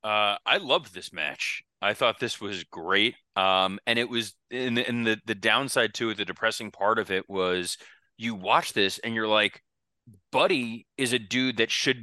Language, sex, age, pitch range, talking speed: English, male, 30-49, 100-120 Hz, 200 wpm